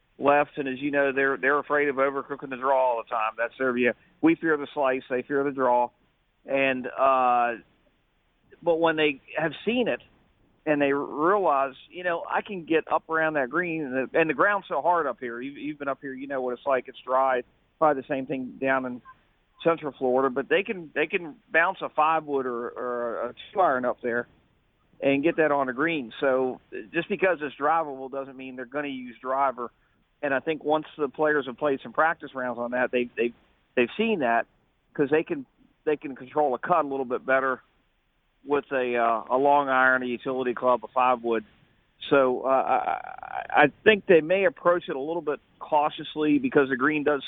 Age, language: 40-59, English